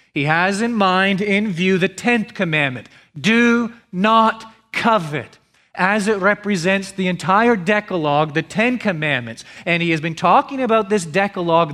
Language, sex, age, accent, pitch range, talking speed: English, male, 40-59, American, 170-225 Hz, 150 wpm